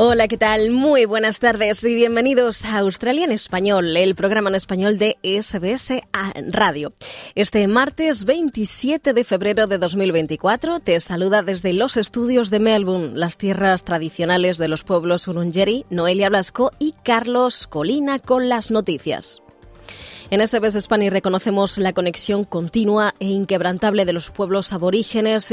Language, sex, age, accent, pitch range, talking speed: Spanish, female, 20-39, Spanish, 185-235 Hz, 145 wpm